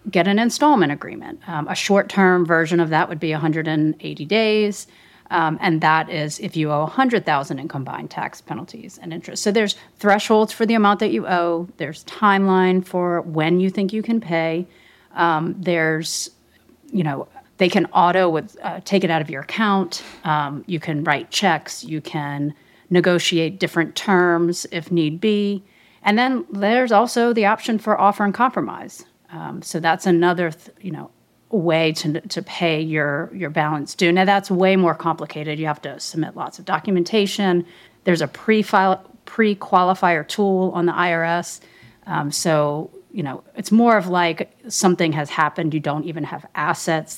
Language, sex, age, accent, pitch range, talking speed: English, female, 40-59, American, 160-200 Hz, 175 wpm